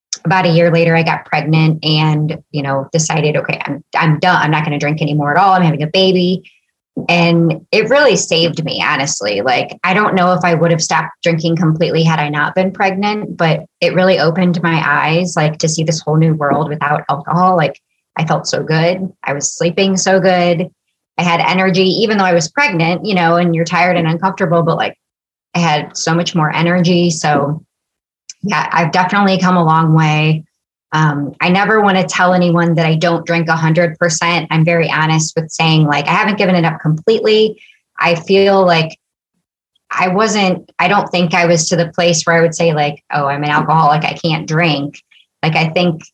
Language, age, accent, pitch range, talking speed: English, 30-49, American, 160-180 Hz, 205 wpm